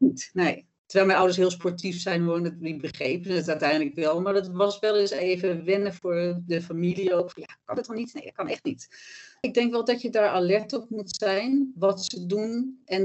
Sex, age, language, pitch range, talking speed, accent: female, 40-59, Dutch, 165-190 Hz, 230 wpm, Dutch